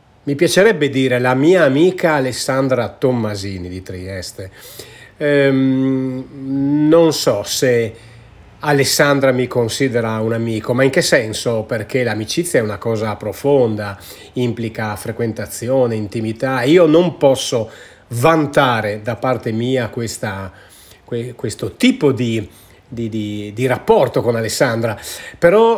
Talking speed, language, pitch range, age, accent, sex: 110 wpm, Italian, 110-150 Hz, 40-59, native, male